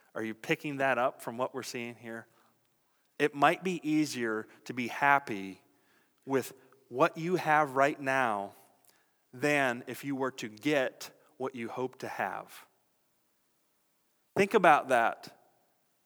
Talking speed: 140 wpm